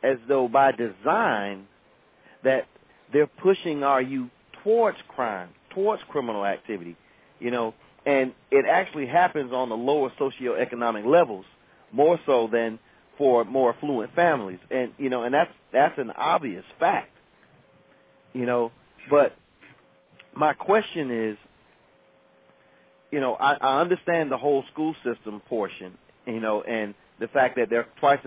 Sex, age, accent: male, 40-59, American